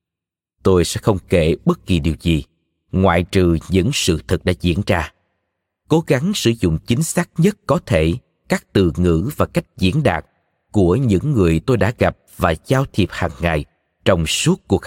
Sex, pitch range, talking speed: male, 85-120 Hz, 185 wpm